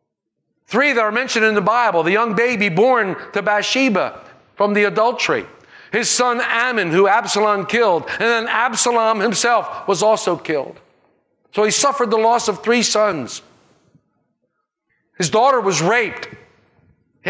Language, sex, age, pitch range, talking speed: English, male, 50-69, 165-235 Hz, 145 wpm